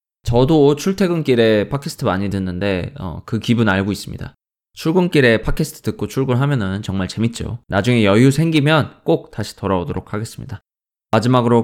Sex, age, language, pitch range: male, 20-39, Korean, 100-140 Hz